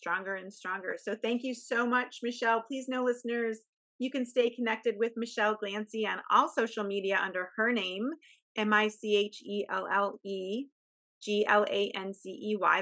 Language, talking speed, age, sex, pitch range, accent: English, 125 wpm, 30-49, female, 210-245 Hz, American